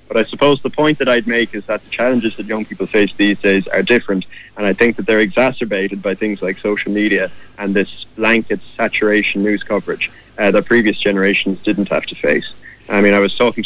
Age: 20-39